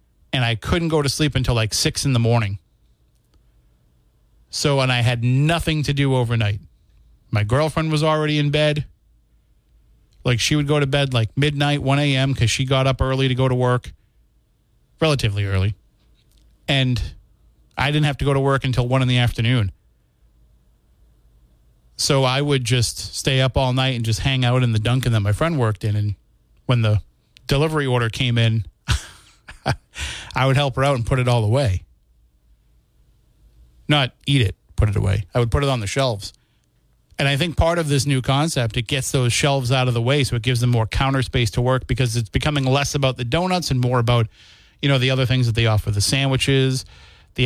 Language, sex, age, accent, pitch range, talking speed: English, male, 30-49, American, 110-140 Hz, 195 wpm